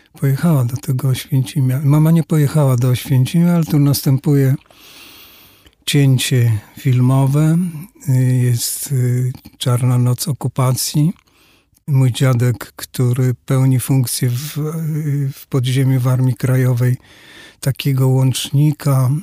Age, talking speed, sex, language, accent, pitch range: 50-69, 95 wpm, male, Polish, native, 125-145 Hz